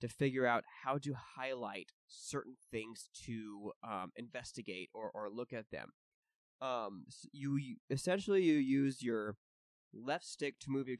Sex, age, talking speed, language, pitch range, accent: male, 20-39, 155 wpm, English, 110-135 Hz, American